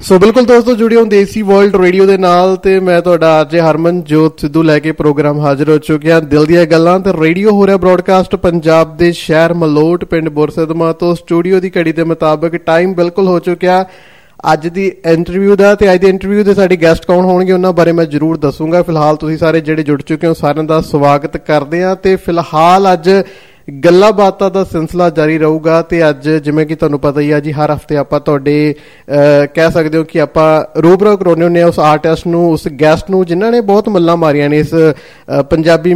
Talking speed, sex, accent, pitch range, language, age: 140 wpm, male, native, 155-180 Hz, Hindi, 20-39